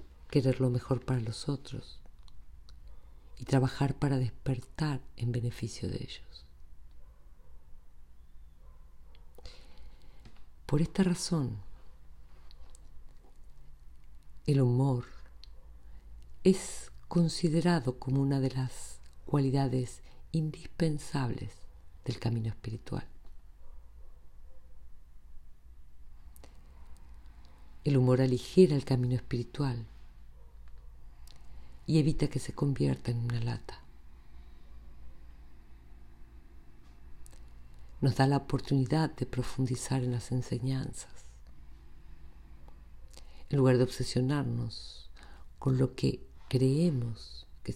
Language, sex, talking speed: Spanish, female, 80 wpm